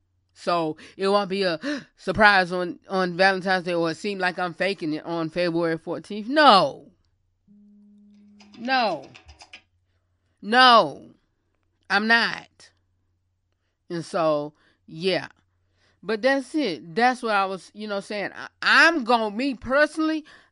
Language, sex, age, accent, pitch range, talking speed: English, female, 30-49, American, 170-275 Hz, 130 wpm